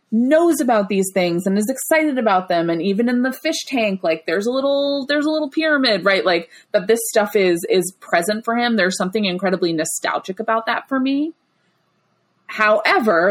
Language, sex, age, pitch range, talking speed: English, female, 20-39, 175-230 Hz, 190 wpm